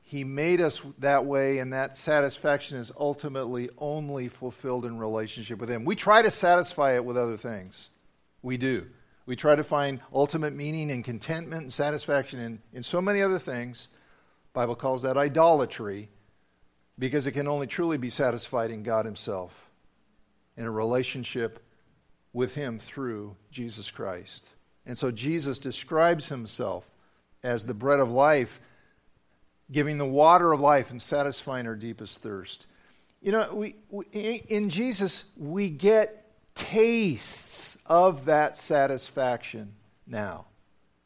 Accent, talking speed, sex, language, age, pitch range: American, 145 wpm, male, English, 50-69, 120-170 Hz